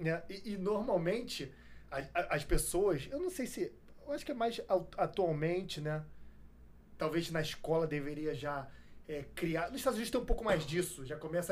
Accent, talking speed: Brazilian, 190 wpm